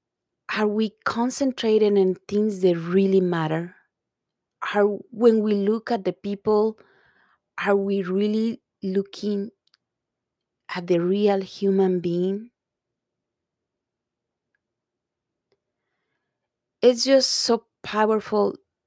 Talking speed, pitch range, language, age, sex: 90 wpm, 185-205 Hz, English, 30-49, female